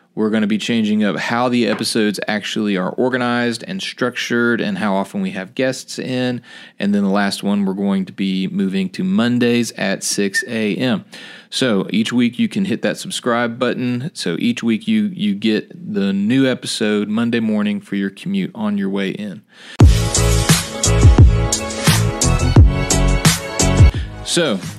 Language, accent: English, American